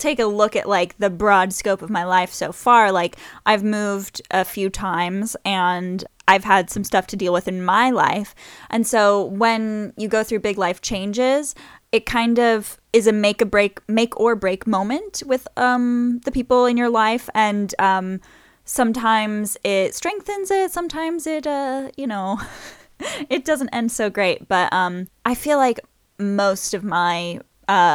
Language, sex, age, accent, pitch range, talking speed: English, female, 10-29, American, 185-240 Hz, 175 wpm